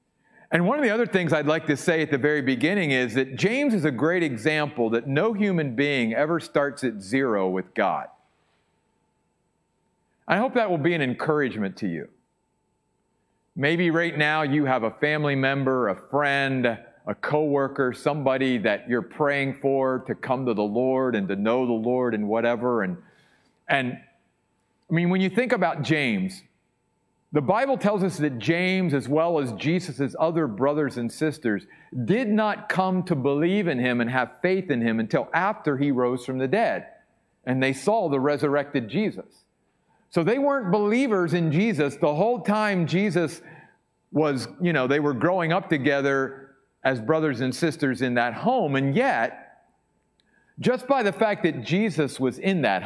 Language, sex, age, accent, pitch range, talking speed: English, male, 40-59, American, 130-180 Hz, 175 wpm